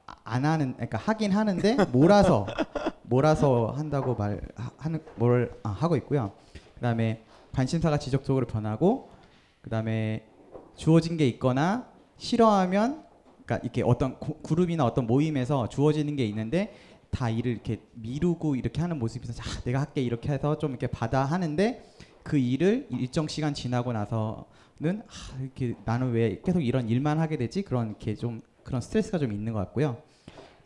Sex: male